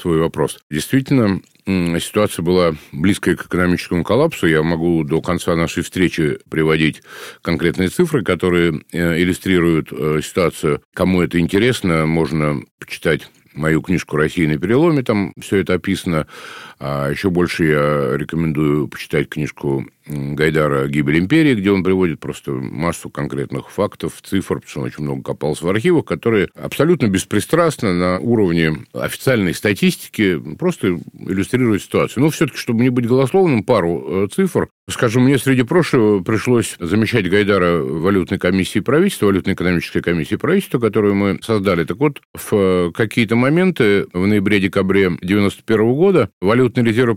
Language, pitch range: Russian, 80-110 Hz